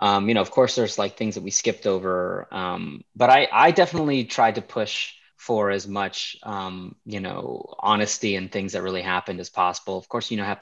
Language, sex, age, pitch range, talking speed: English, male, 20-39, 100-125 Hz, 225 wpm